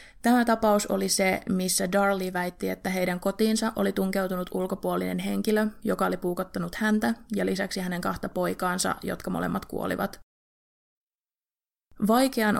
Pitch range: 180-210 Hz